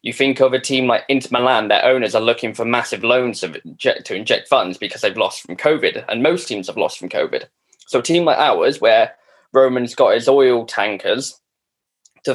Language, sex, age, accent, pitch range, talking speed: English, male, 10-29, British, 120-145 Hz, 215 wpm